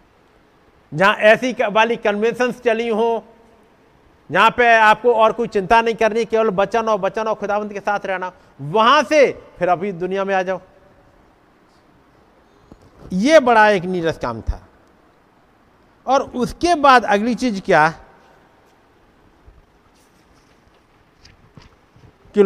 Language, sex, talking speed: Hindi, male, 120 wpm